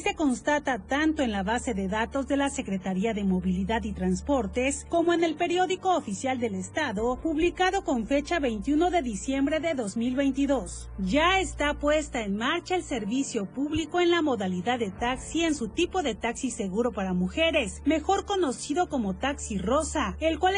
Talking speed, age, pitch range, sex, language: 170 wpm, 40-59, 225-315 Hz, female, Spanish